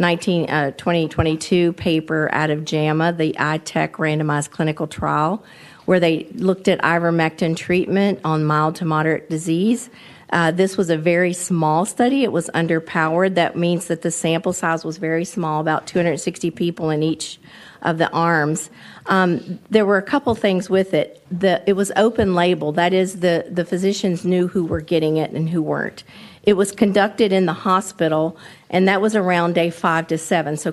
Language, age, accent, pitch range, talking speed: English, 50-69, American, 160-190 Hz, 180 wpm